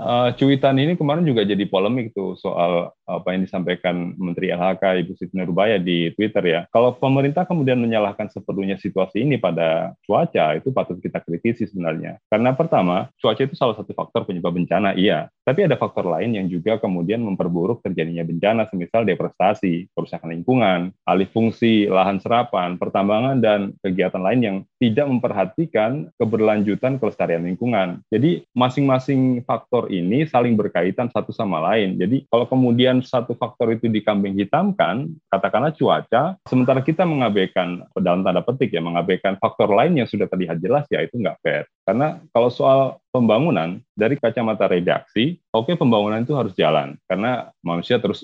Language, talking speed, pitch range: Indonesian, 155 wpm, 95-125 Hz